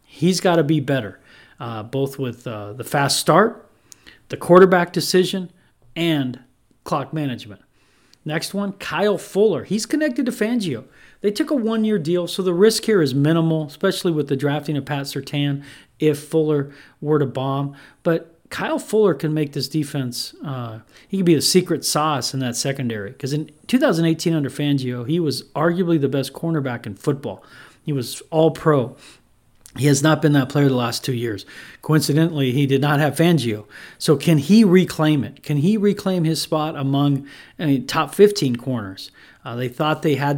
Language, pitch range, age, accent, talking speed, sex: English, 130-165 Hz, 40-59, American, 175 wpm, male